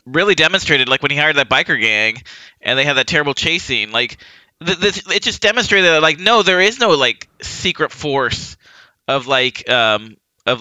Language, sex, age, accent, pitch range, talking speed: English, male, 20-39, American, 130-185 Hz, 200 wpm